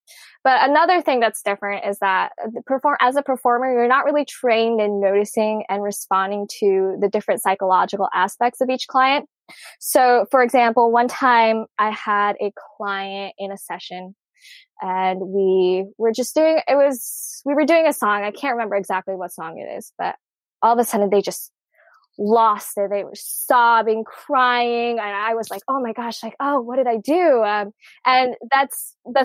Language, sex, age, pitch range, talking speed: English, female, 10-29, 205-265 Hz, 180 wpm